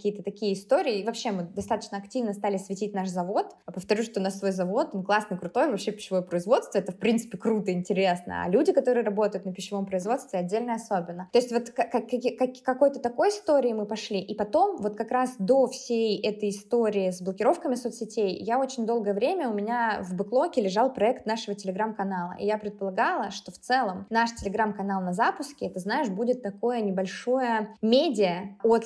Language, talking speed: Russian, 185 wpm